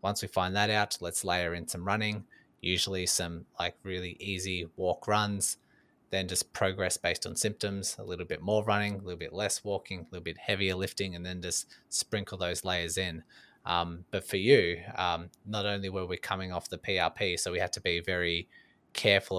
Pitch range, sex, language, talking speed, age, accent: 85-100 Hz, male, English, 200 wpm, 20-39, Australian